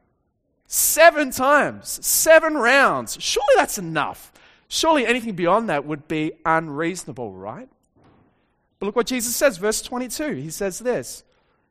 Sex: male